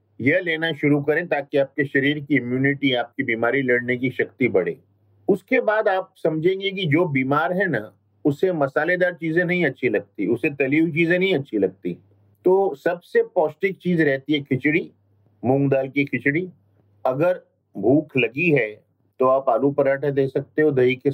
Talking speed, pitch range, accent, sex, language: 175 wpm, 120-155 Hz, native, male, Hindi